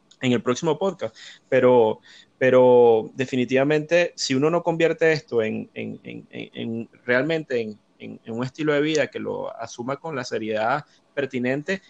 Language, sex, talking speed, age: Spanish, male, 160 wpm, 30-49